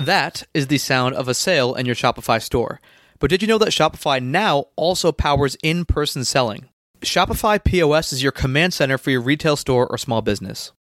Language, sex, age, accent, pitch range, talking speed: English, male, 20-39, American, 125-160 Hz, 195 wpm